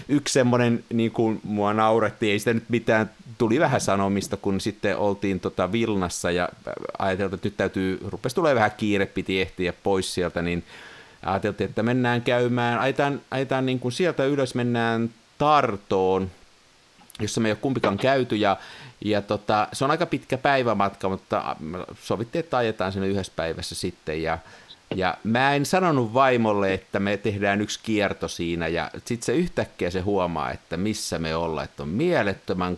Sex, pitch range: male, 95-125 Hz